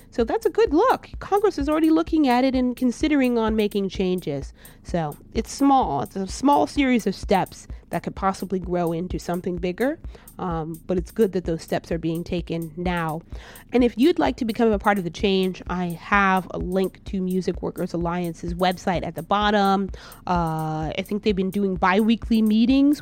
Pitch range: 180-220 Hz